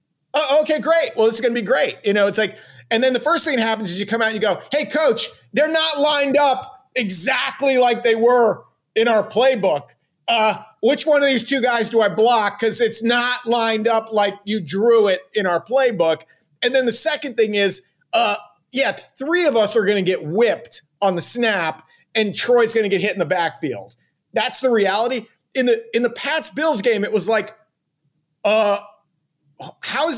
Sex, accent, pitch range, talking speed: male, American, 200-265 Hz, 215 wpm